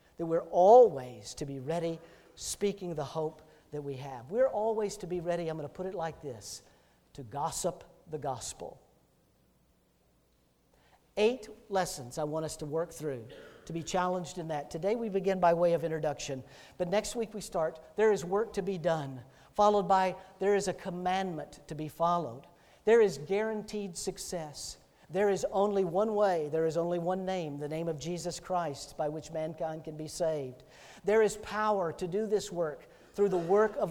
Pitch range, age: 160-200 Hz, 50-69